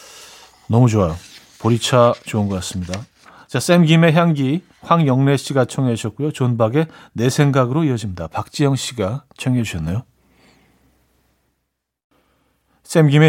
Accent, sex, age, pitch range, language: native, male, 40-59, 115-155 Hz, Korean